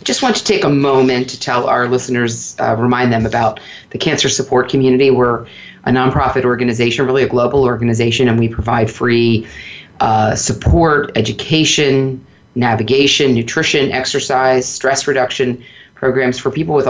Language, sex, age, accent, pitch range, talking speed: English, female, 30-49, American, 115-135 Hz, 150 wpm